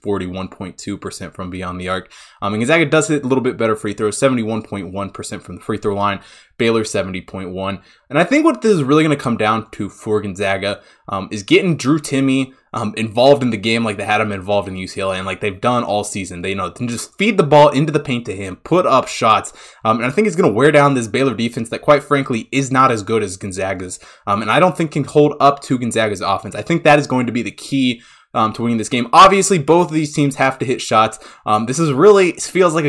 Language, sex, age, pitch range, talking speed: English, male, 20-39, 105-145 Hz, 255 wpm